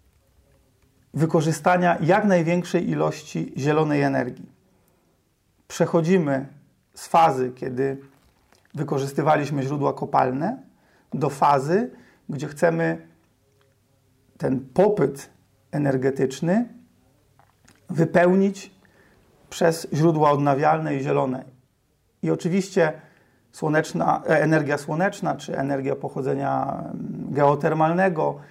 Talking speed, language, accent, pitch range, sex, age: 70 wpm, Polish, native, 140-180 Hz, male, 40-59